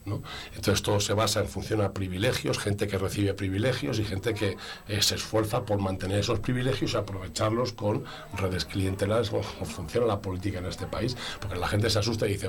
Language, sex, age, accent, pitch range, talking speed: Spanish, male, 50-69, Spanish, 100-110 Hz, 200 wpm